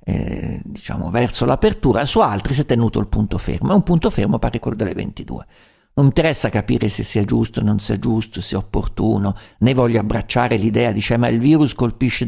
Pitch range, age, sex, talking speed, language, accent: 105-135 Hz, 50-69, male, 205 wpm, Italian, native